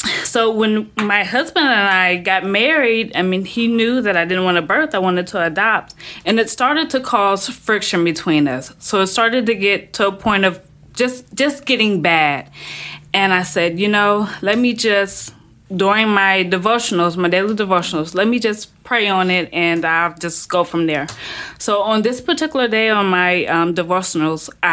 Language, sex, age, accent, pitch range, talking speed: English, female, 20-39, American, 180-230 Hz, 190 wpm